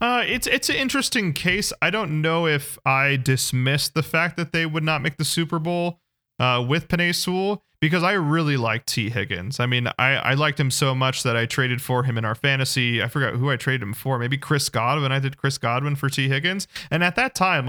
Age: 30-49